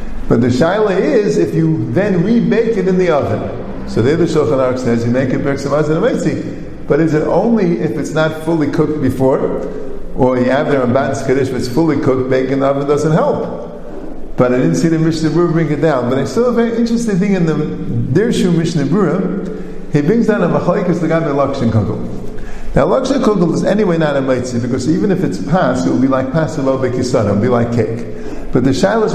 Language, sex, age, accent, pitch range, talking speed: English, male, 50-69, American, 130-175 Hz, 210 wpm